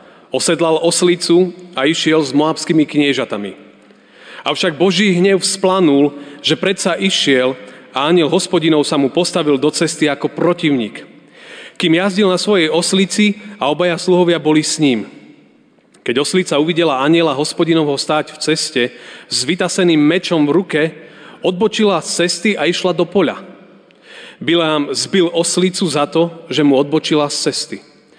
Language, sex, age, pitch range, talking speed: Slovak, male, 30-49, 155-185 Hz, 140 wpm